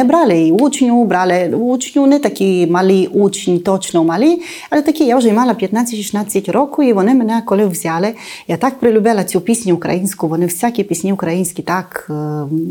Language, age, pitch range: Ukrainian, 30-49, 175-235 Hz